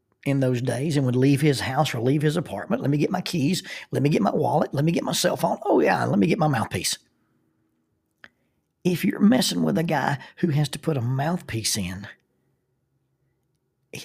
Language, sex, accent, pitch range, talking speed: English, male, American, 125-165 Hz, 210 wpm